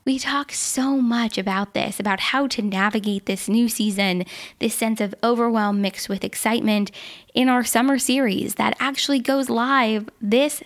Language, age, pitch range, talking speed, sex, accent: English, 10-29, 210-260 Hz, 165 wpm, female, American